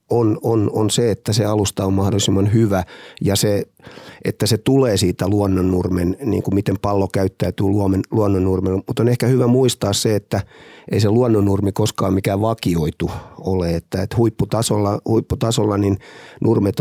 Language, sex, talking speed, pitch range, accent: Finnish, male, 155 wpm, 95-115 Hz, native